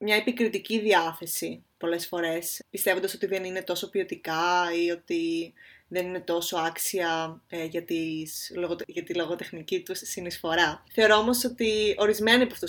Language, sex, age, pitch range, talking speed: Greek, female, 20-39, 180-240 Hz, 150 wpm